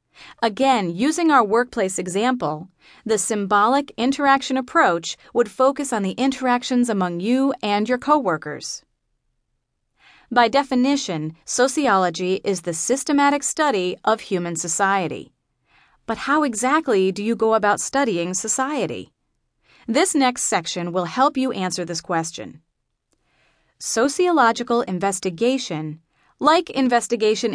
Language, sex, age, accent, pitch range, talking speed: English, female, 30-49, American, 185-260 Hz, 110 wpm